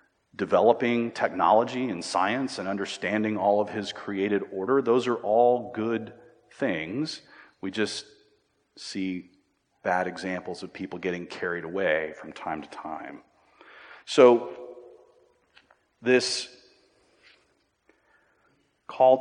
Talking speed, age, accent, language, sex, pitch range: 105 wpm, 40-59, American, English, male, 100-125 Hz